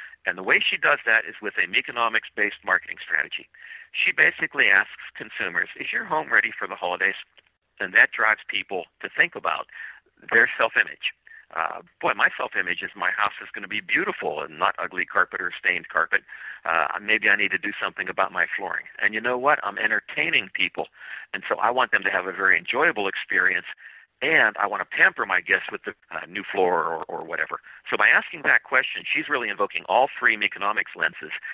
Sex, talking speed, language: male, 200 wpm, English